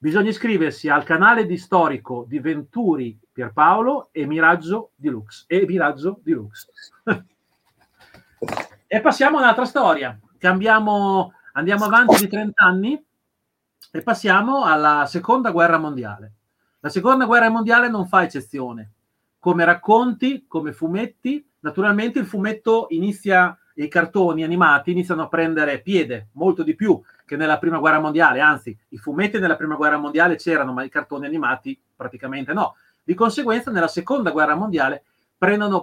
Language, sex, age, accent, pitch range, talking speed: Italian, male, 40-59, native, 150-220 Hz, 135 wpm